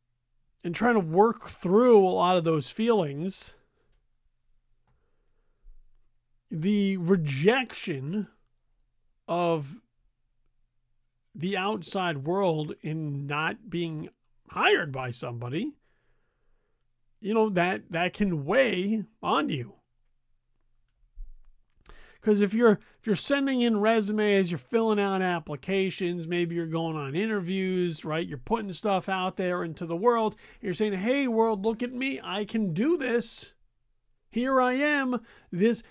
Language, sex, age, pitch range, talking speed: English, male, 40-59, 145-225 Hz, 120 wpm